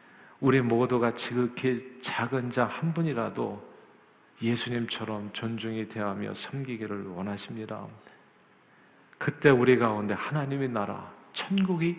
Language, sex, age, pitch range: Korean, male, 50-69, 115-155 Hz